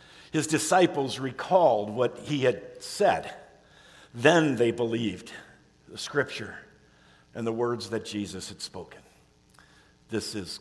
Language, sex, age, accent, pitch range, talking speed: English, male, 50-69, American, 145-180 Hz, 120 wpm